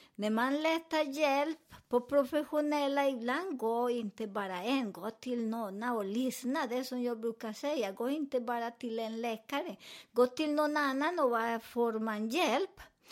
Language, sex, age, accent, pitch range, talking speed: Swedish, male, 50-69, American, 230-300 Hz, 160 wpm